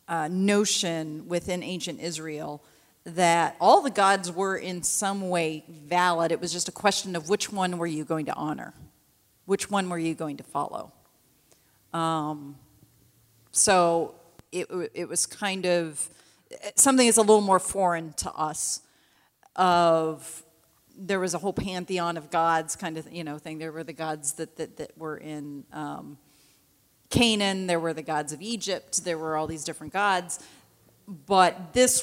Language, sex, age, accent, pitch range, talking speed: English, female, 40-59, American, 160-185 Hz, 165 wpm